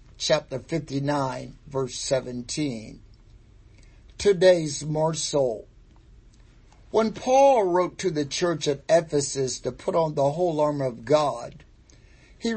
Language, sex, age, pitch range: English, male, 60-79, 130-165 Hz